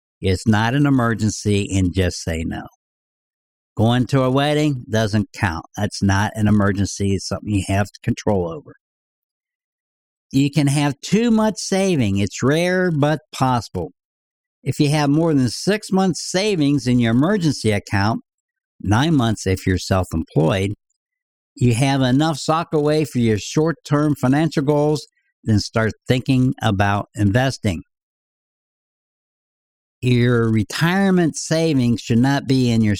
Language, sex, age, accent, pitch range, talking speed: English, male, 60-79, American, 110-145 Hz, 135 wpm